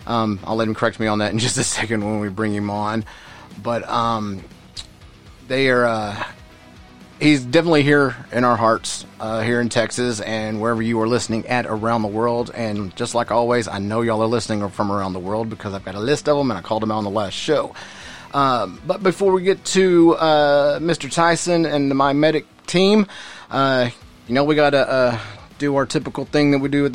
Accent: American